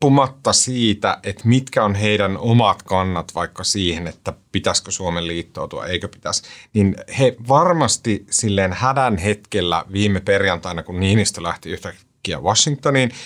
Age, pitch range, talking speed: 30-49, 100-130 Hz, 125 wpm